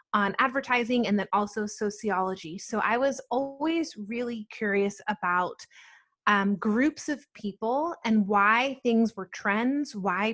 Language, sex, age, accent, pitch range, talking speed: English, female, 20-39, American, 200-235 Hz, 135 wpm